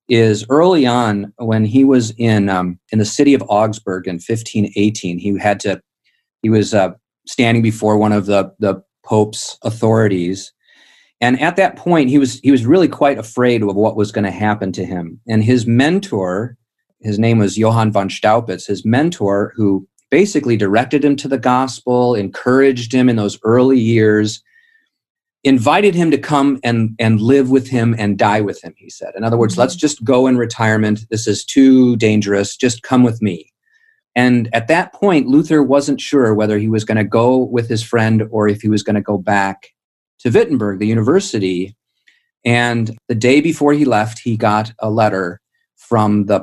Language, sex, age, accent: English, male, 40-59, American